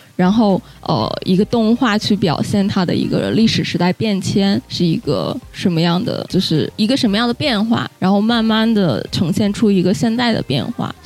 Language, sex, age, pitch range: Chinese, female, 20-39, 180-235 Hz